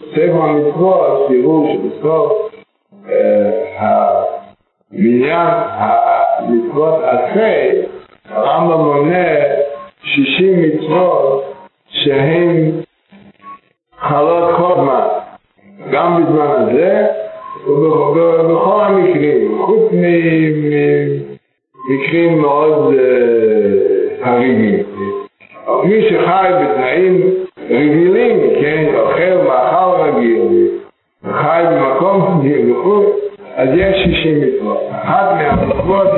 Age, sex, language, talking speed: 60-79, male, Hebrew, 65 wpm